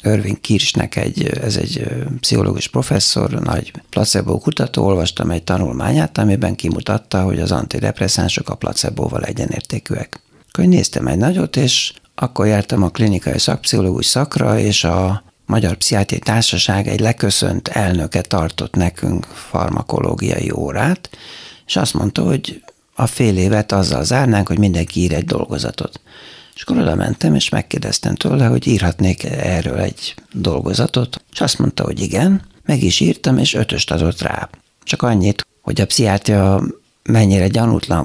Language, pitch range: Hungarian, 95-120 Hz